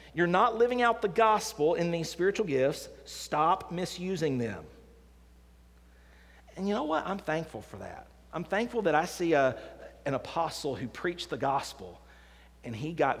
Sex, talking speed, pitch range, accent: male, 160 wpm, 125-180 Hz, American